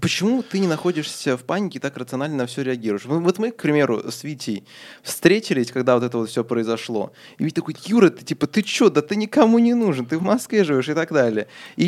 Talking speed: 230 wpm